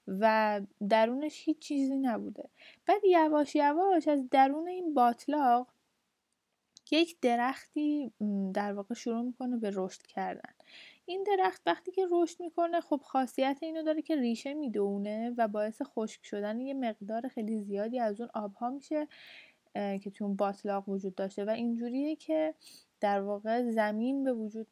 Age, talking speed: 20-39, 145 wpm